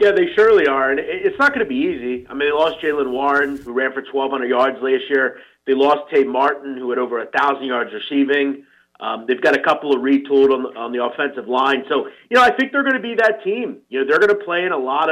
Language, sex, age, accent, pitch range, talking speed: English, male, 30-49, American, 135-220 Hz, 260 wpm